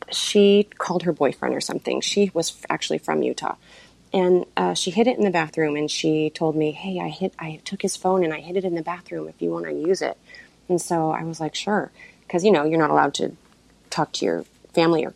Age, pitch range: 30-49, 155-190 Hz